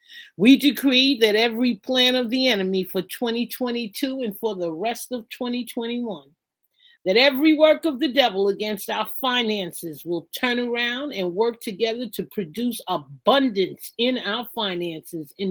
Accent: American